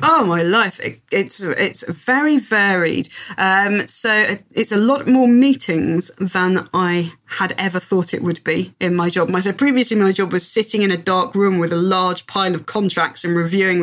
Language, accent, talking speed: English, British, 180 wpm